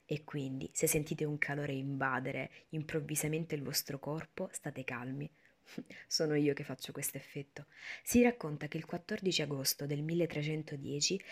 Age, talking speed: 20-39, 145 wpm